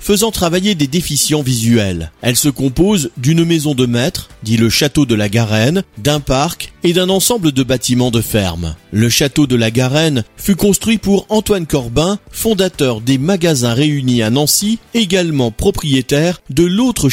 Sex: male